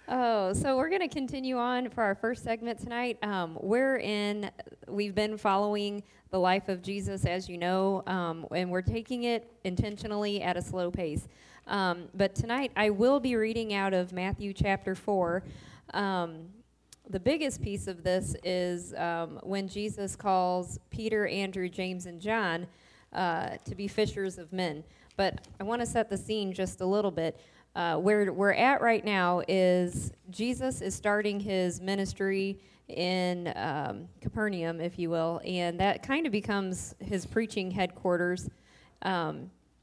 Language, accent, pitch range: English, American, 180-210 Hz